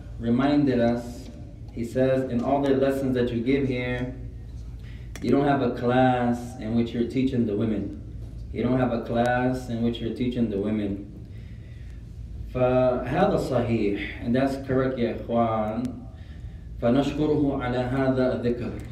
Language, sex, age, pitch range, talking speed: English, male, 20-39, 110-125 Hz, 120 wpm